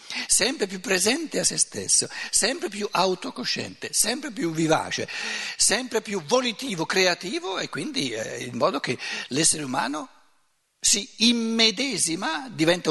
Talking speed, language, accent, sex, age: 120 wpm, Italian, native, male, 60-79